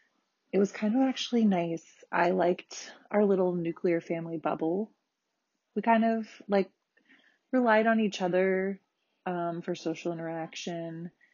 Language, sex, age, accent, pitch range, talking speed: English, female, 20-39, American, 165-215 Hz, 130 wpm